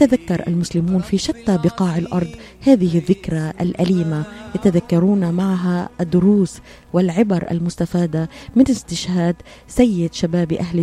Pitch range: 175-205 Hz